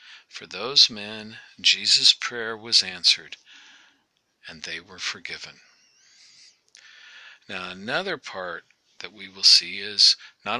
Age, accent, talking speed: 50-69, American, 115 wpm